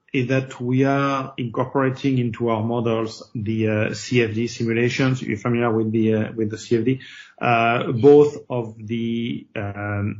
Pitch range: 110-130 Hz